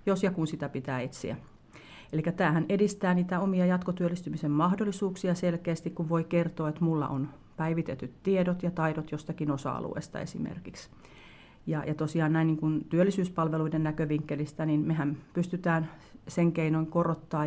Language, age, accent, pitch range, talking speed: Finnish, 40-59, native, 145-165 Hz, 140 wpm